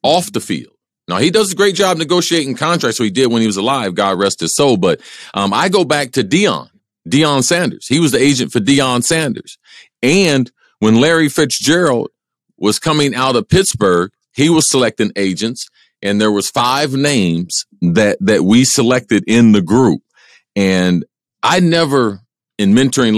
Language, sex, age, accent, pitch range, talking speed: English, male, 40-59, American, 100-135 Hz, 175 wpm